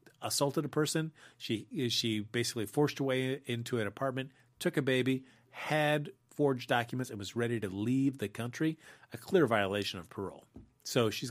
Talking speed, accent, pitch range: 170 wpm, American, 115-135 Hz